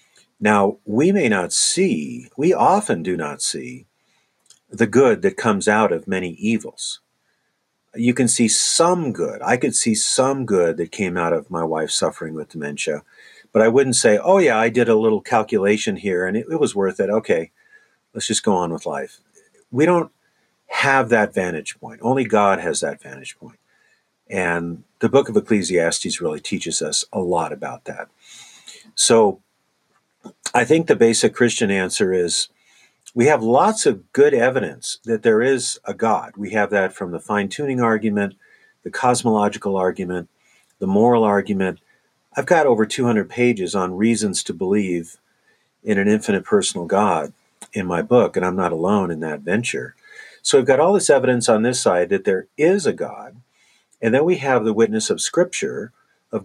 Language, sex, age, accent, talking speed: English, male, 50-69, American, 175 wpm